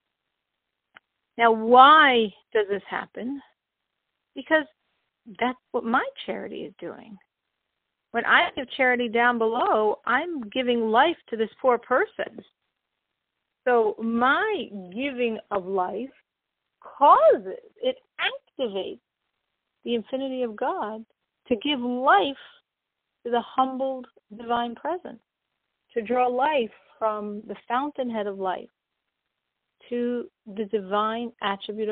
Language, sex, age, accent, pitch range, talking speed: English, female, 50-69, American, 210-260 Hz, 105 wpm